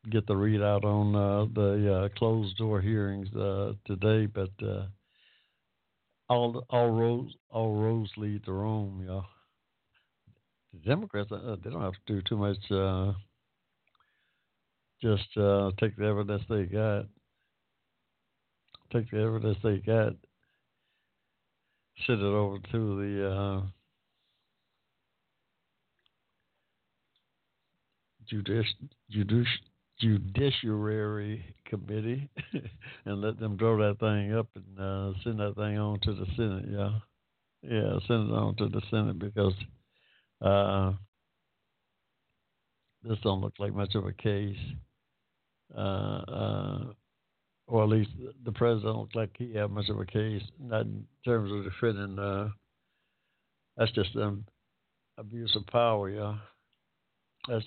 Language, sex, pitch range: English, male, 100-110 Hz